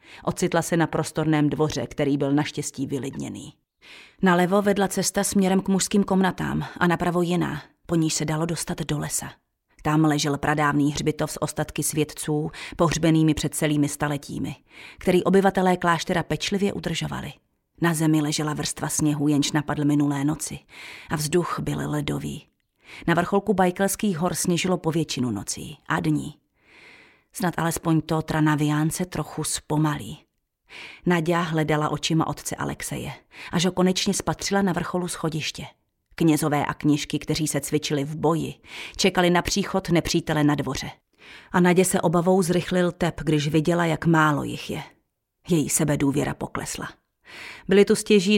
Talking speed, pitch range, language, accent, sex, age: 145 wpm, 150-180 Hz, Czech, native, female, 30-49